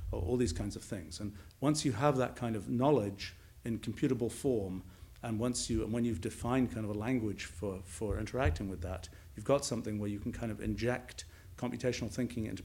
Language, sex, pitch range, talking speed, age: English, male, 95-120 Hz, 210 wpm, 50-69